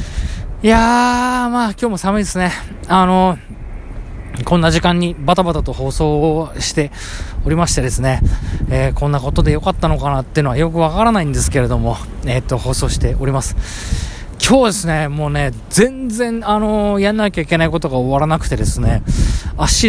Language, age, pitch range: Japanese, 20-39, 105-175 Hz